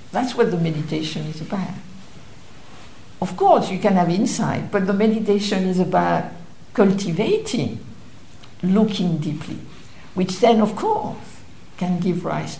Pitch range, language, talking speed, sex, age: 185-230 Hz, English, 130 wpm, female, 60-79